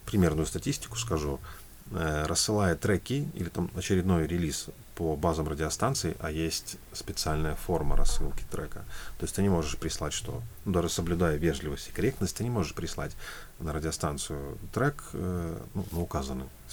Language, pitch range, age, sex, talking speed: Russian, 80-100 Hz, 30-49, male, 155 wpm